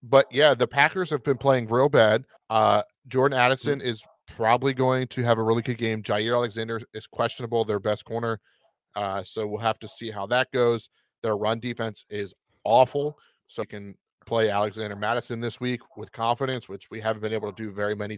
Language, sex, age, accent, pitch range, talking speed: English, male, 30-49, American, 110-125 Hz, 200 wpm